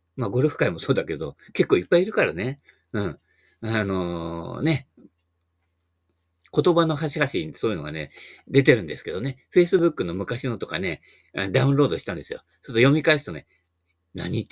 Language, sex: Japanese, male